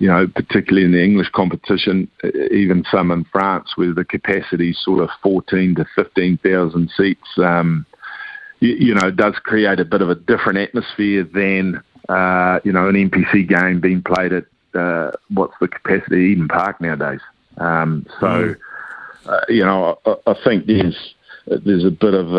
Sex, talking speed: male, 170 wpm